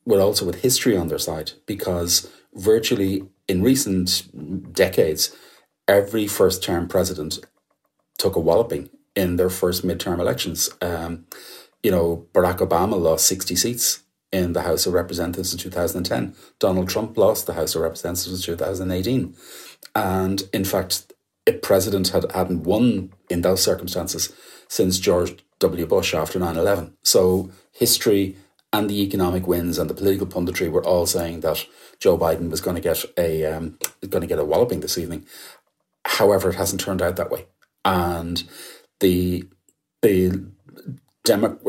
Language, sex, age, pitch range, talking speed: English, male, 30-49, 90-100 Hz, 150 wpm